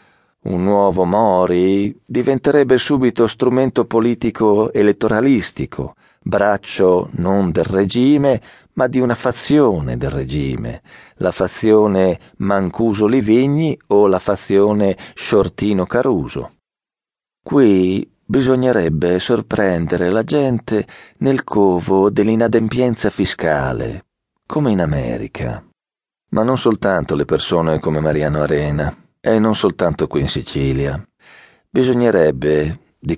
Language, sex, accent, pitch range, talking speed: Italian, male, native, 90-115 Hz, 100 wpm